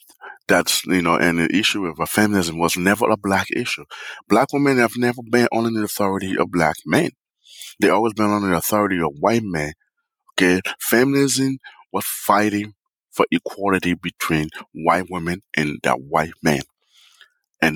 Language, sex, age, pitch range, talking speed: English, male, 30-49, 85-115 Hz, 160 wpm